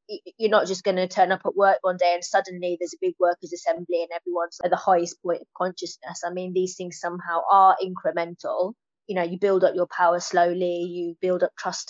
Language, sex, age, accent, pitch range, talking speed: English, female, 20-39, British, 175-195 Hz, 225 wpm